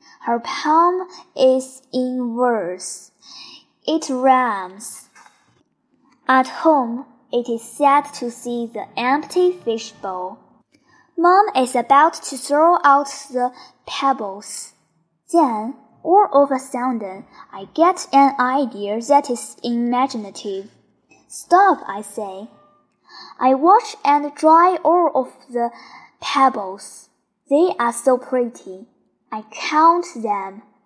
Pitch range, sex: 230-300 Hz, male